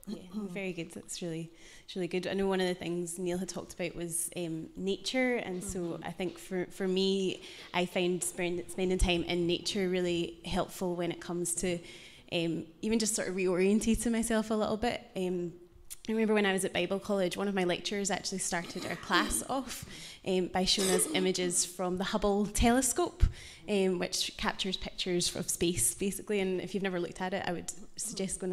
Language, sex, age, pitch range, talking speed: English, female, 20-39, 175-195 Hz, 200 wpm